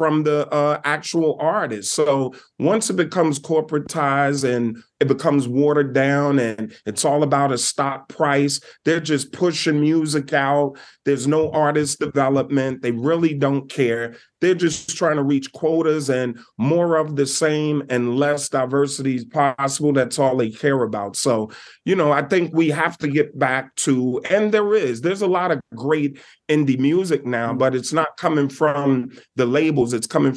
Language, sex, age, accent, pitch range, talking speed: English, male, 30-49, American, 130-155 Hz, 170 wpm